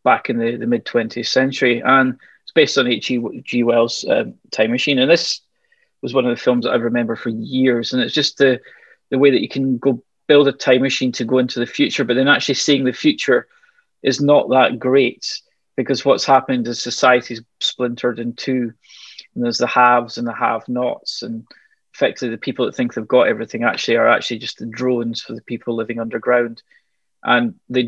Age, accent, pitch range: 20-39, British, 120-135 Hz